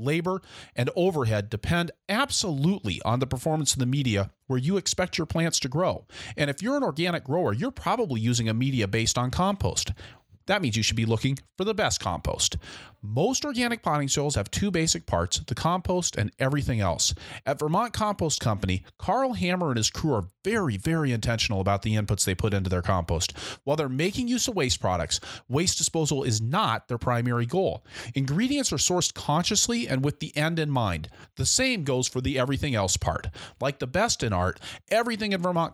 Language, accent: English, American